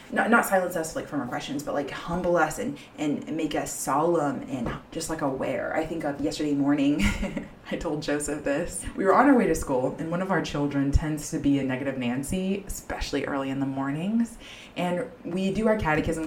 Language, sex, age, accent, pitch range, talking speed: English, female, 20-39, American, 145-185 Hz, 210 wpm